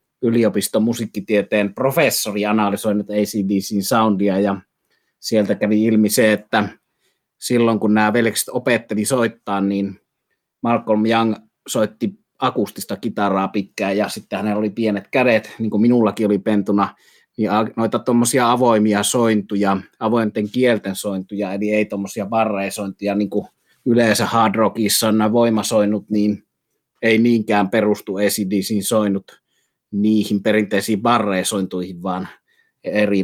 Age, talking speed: 30-49, 120 wpm